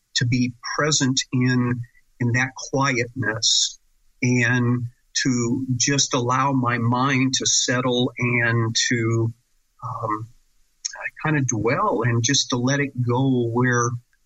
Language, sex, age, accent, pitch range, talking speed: English, male, 50-69, American, 120-135 Hz, 120 wpm